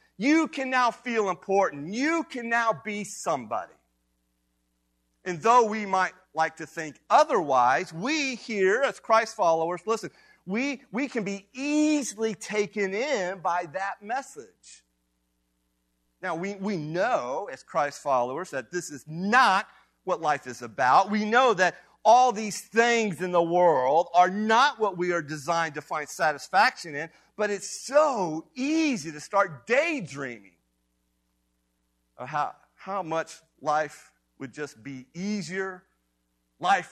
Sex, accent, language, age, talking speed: male, American, English, 40-59, 135 wpm